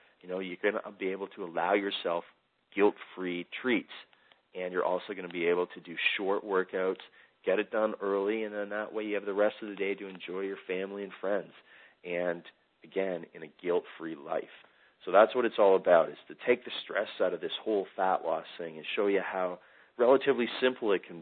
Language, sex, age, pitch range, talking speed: English, male, 40-59, 85-100 Hz, 215 wpm